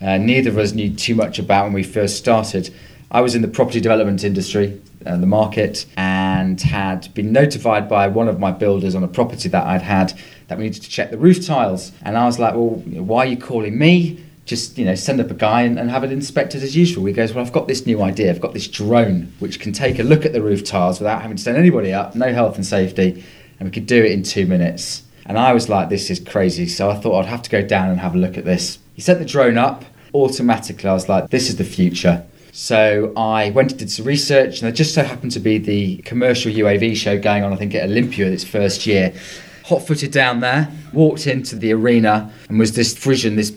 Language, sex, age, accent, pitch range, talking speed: English, male, 30-49, British, 100-130 Hz, 250 wpm